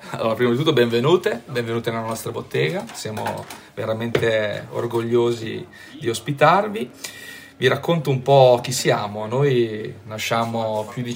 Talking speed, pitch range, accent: 130 wpm, 105-125 Hz, native